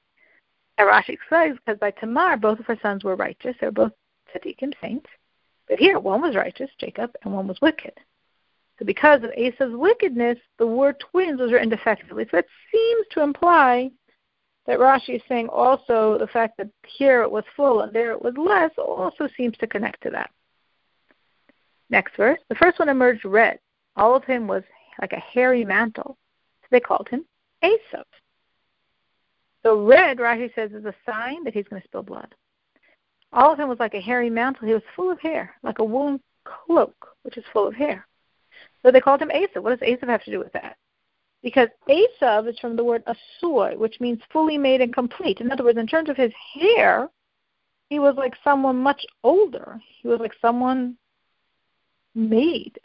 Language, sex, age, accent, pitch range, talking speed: English, female, 50-69, American, 225-285 Hz, 190 wpm